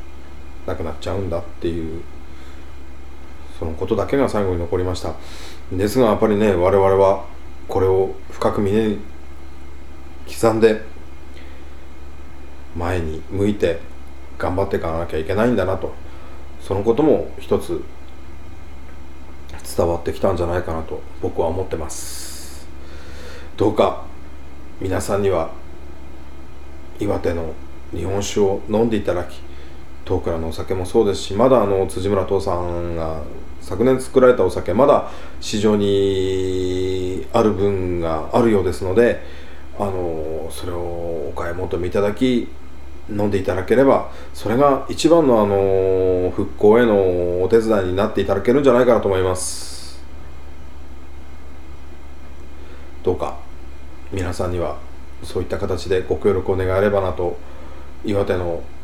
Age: 40-59